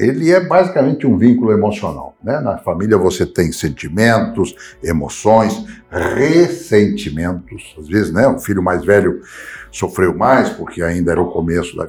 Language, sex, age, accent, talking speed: Portuguese, male, 60-79, Brazilian, 145 wpm